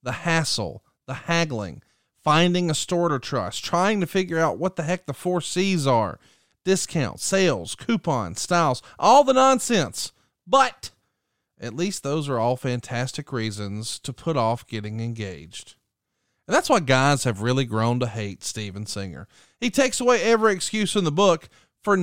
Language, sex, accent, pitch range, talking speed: English, male, American, 120-180 Hz, 165 wpm